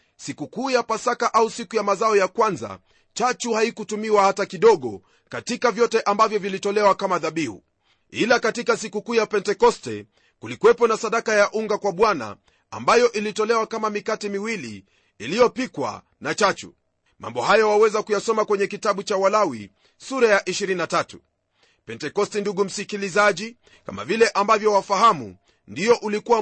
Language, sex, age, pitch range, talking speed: Swahili, male, 40-59, 195-230 Hz, 140 wpm